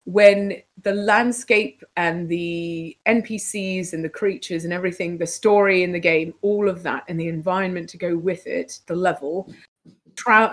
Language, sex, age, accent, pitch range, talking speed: English, female, 30-49, British, 170-200 Hz, 165 wpm